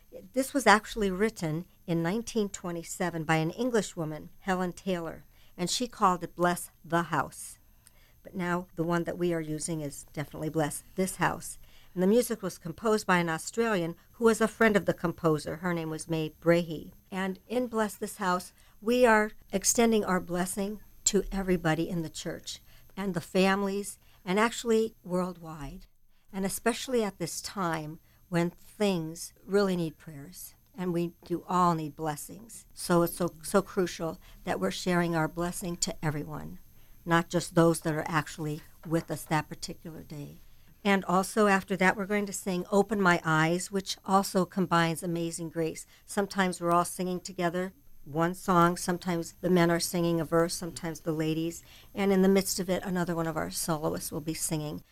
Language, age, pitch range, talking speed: English, 60-79, 165-195 Hz, 175 wpm